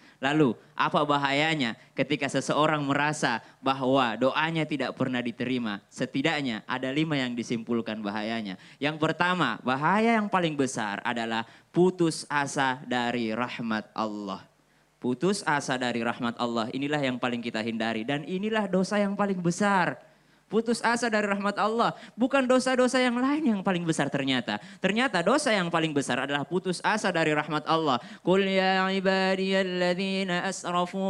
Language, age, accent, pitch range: Indonesian, 20-39, native, 140-205 Hz